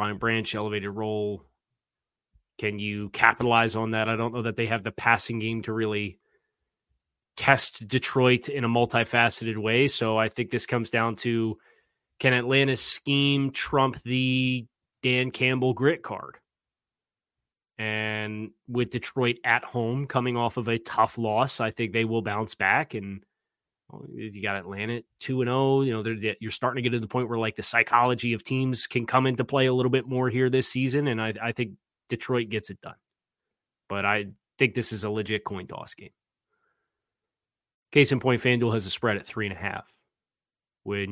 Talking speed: 180 wpm